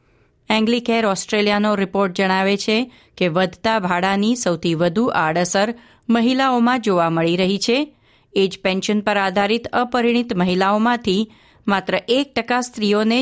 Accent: native